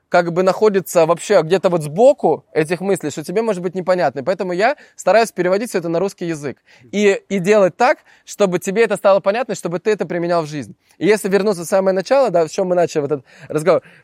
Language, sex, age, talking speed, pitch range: Russian, male, 20-39, 220 wpm, 155-200 Hz